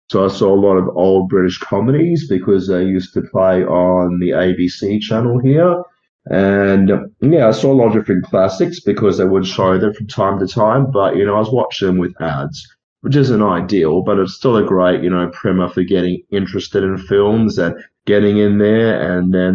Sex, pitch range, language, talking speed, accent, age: male, 90-105 Hz, English, 210 wpm, Australian, 30-49